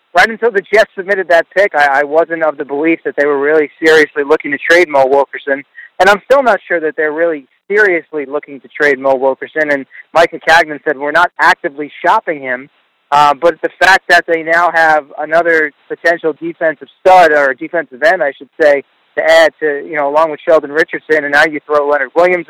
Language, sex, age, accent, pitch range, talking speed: English, male, 30-49, American, 145-175 Hz, 210 wpm